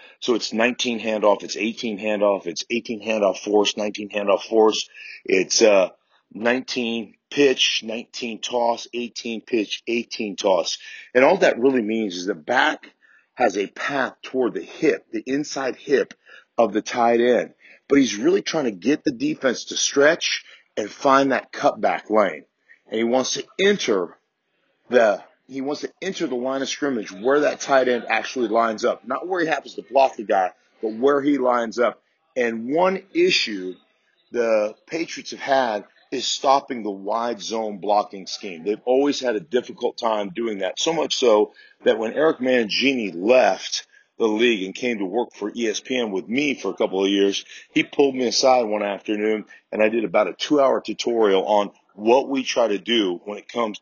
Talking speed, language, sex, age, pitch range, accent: 180 wpm, English, male, 40-59, 110-135 Hz, American